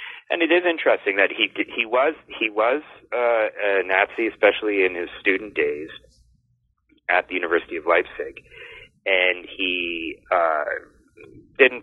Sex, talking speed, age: male, 135 wpm, 40-59